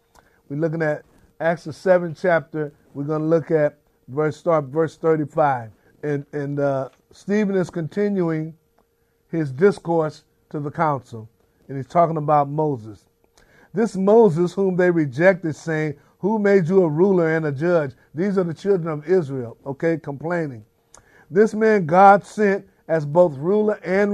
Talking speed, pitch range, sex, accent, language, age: 155 wpm, 155-190 Hz, male, American, English, 50-69